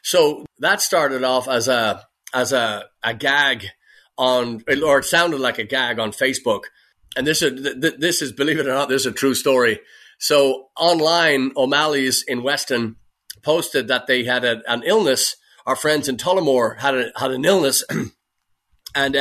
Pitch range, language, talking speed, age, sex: 130-160 Hz, English, 170 wpm, 30-49, male